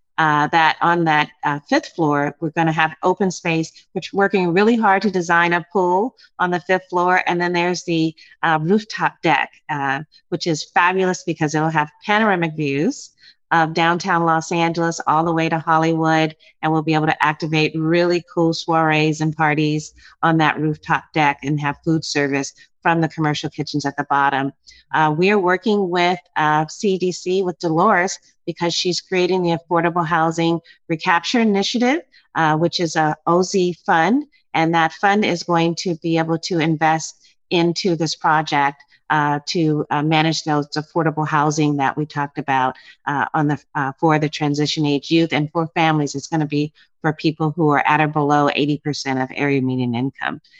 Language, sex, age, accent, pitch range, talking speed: English, female, 40-59, American, 150-175 Hz, 175 wpm